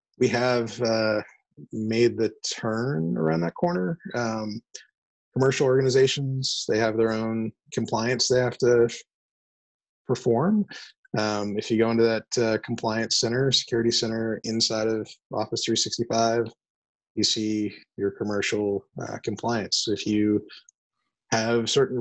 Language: English